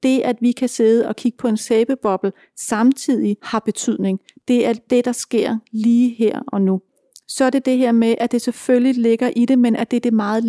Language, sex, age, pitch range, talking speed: Danish, female, 30-49, 220-250 Hz, 230 wpm